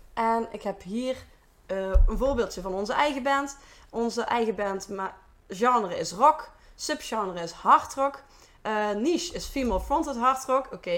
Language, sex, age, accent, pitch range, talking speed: Dutch, female, 20-39, Dutch, 200-275 Hz, 160 wpm